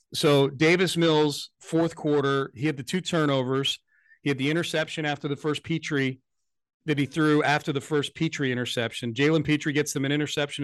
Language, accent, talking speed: English, American, 180 wpm